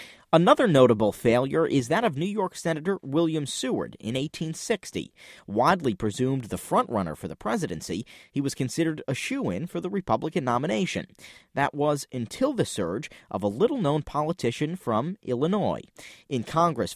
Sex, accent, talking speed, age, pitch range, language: male, American, 150 wpm, 40-59, 110-170 Hz, English